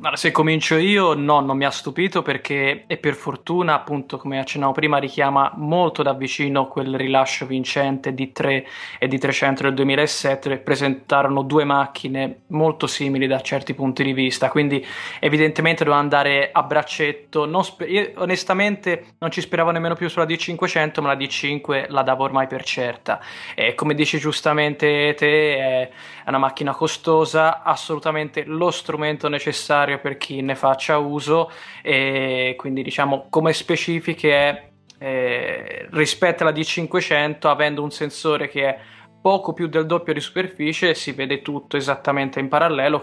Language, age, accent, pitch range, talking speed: Italian, 20-39, native, 135-155 Hz, 155 wpm